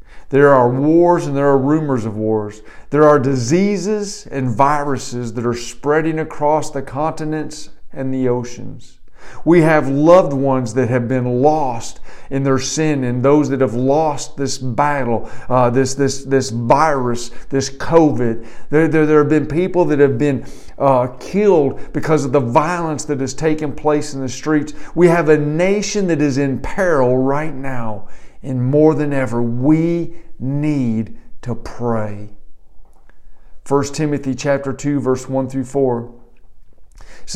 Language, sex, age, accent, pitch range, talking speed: English, male, 50-69, American, 125-155 Hz, 155 wpm